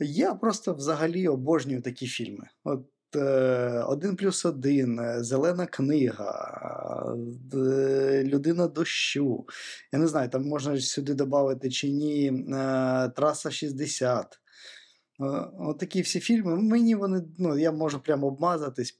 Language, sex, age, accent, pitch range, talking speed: Ukrainian, male, 20-39, native, 130-165 Hz, 110 wpm